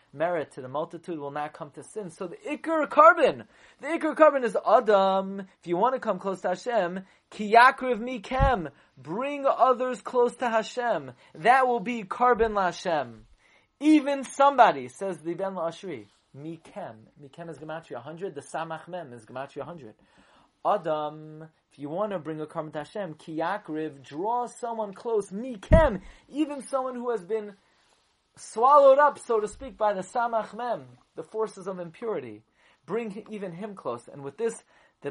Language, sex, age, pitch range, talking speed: English, male, 30-49, 155-240 Hz, 165 wpm